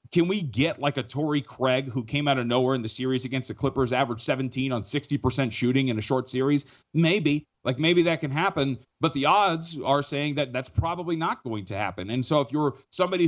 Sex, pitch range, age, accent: male, 130-180 Hz, 30-49, American